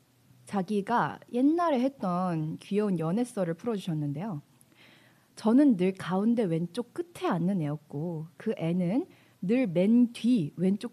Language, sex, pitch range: Korean, female, 165-235 Hz